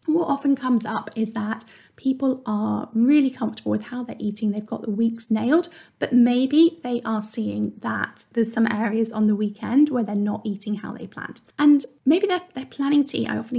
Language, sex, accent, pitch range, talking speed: English, female, British, 215-255 Hz, 210 wpm